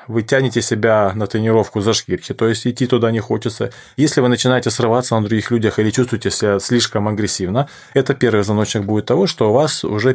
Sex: male